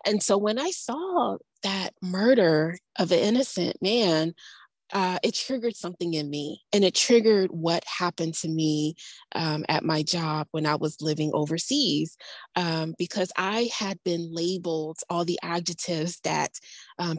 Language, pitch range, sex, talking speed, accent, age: English, 165-205 Hz, female, 155 wpm, American, 20-39